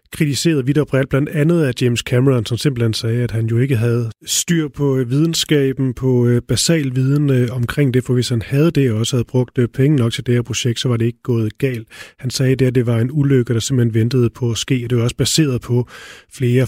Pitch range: 115-130 Hz